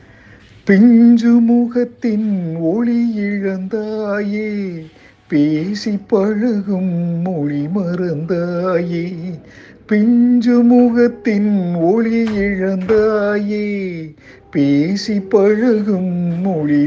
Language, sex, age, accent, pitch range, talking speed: Tamil, male, 50-69, native, 140-195 Hz, 45 wpm